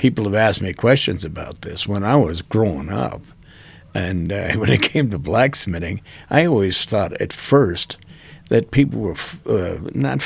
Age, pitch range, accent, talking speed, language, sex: 60-79, 95-125 Hz, American, 175 wpm, English, male